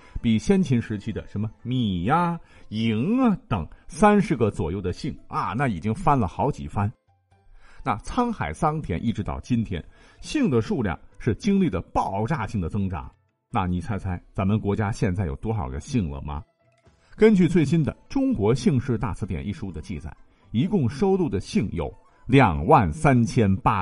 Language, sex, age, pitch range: Chinese, male, 50-69, 95-150 Hz